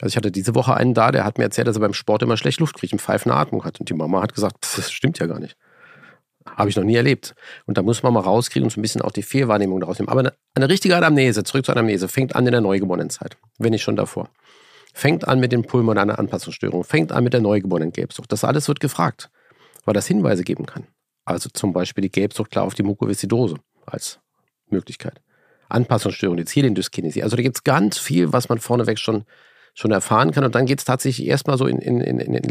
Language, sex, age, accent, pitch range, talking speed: German, male, 50-69, German, 105-125 Hz, 235 wpm